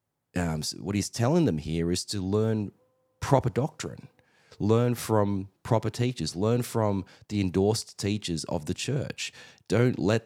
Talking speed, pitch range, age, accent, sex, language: 145 wpm, 90-115 Hz, 30-49, Australian, male, English